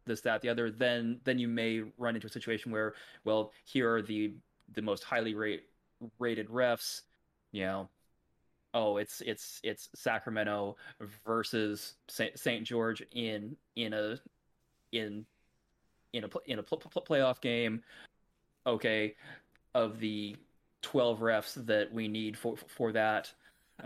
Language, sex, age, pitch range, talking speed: English, male, 20-39, 100-115 Hz, 140 wpm